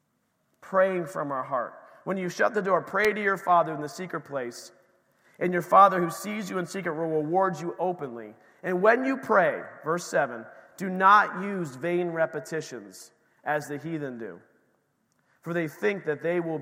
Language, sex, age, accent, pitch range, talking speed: English, male, 40-59, American, 135-175 Hz, 180 wpm